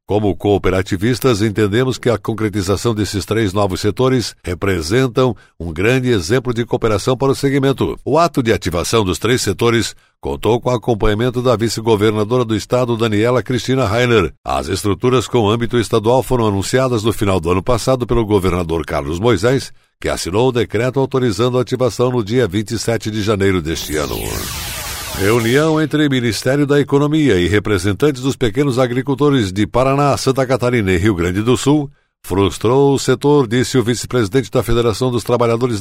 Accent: Brazilian